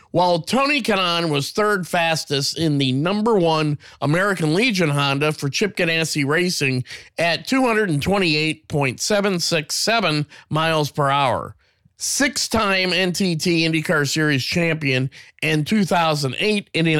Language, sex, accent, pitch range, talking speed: English, male, American, 145-190 Hz, 100 wpm